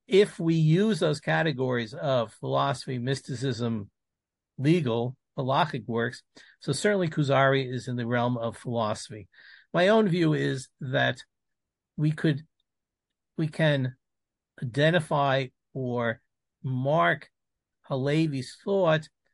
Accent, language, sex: American, English, male